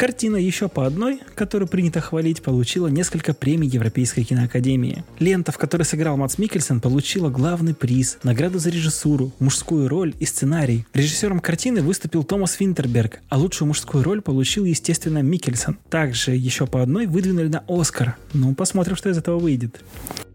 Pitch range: 135-175 Hz